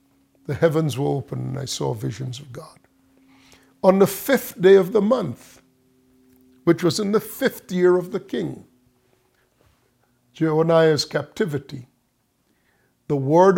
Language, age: English, 50-69